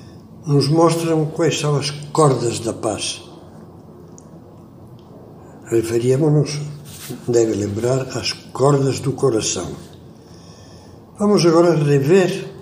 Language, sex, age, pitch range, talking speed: Portuguese, male, 60-79, 120-150 Hz, 90 wpm